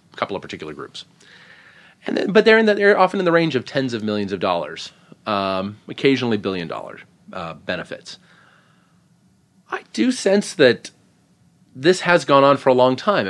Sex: male